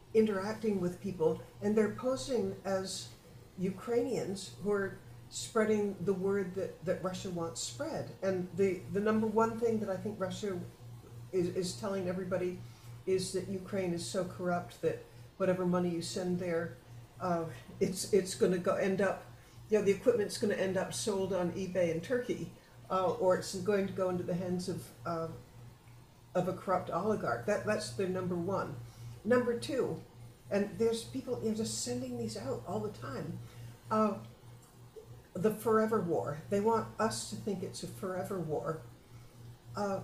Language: English